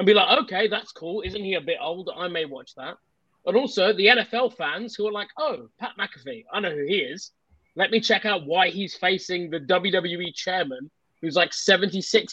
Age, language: 20-39, English